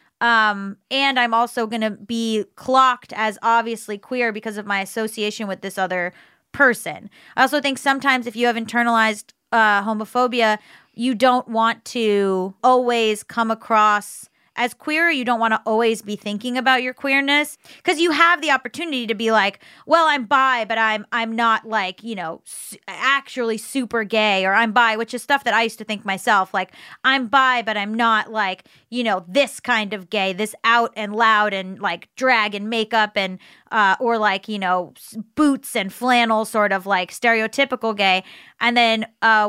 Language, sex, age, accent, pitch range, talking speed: English, female, 30-49, American, 210-250 Hz, 180 wpm